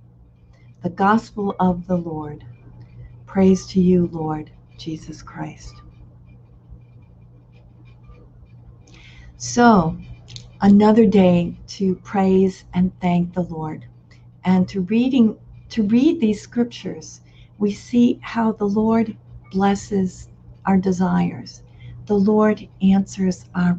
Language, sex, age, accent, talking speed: English, female, 60-79, American, 100 wpm